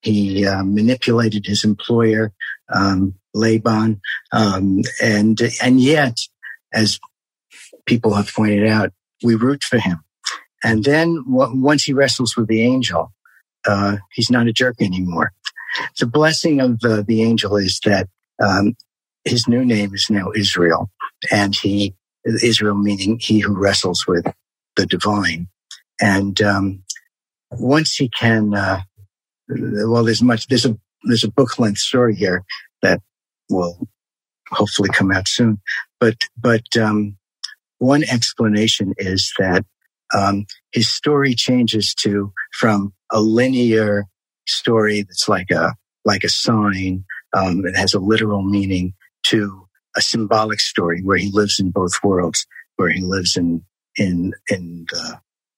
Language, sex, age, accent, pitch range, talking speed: English, male, 50-69, American, 100-115 Hz, 140 wpm